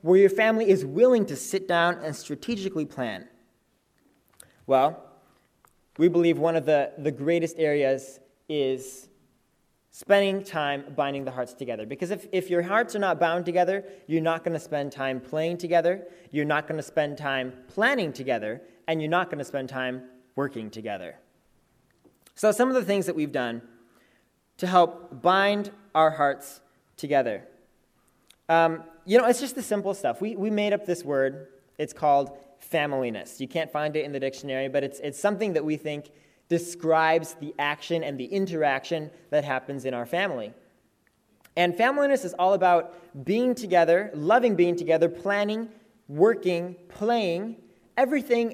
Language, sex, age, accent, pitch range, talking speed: English, male, 20-39, American, 140-185 Hz, 160 wpm